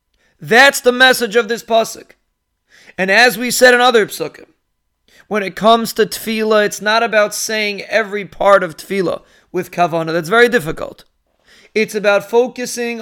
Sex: male